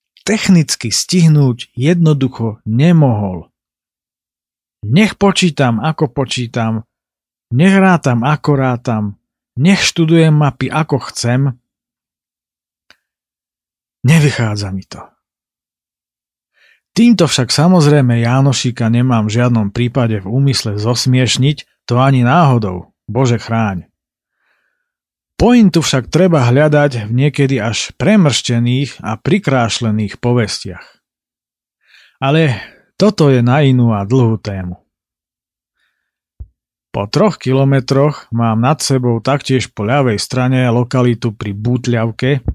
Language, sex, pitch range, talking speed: Slovak, male, 115-145 Hz, 95 wpm